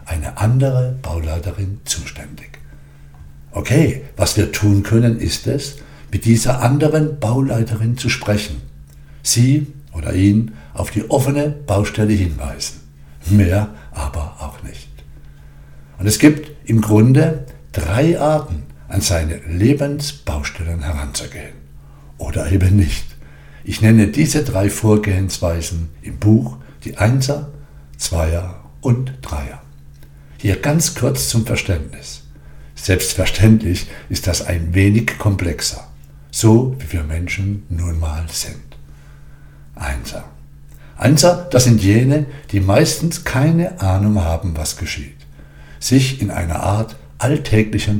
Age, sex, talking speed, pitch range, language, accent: 60-79, male, 115 wpm, 70-115 Hz, German, German